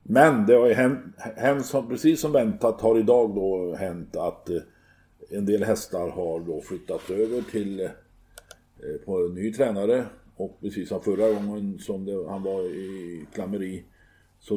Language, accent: Swedish, native